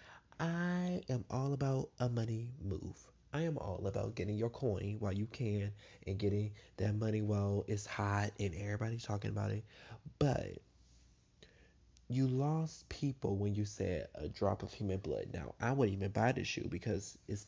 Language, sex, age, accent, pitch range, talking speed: English, male, 20-39, American, 100-125 Hz, 170 wpm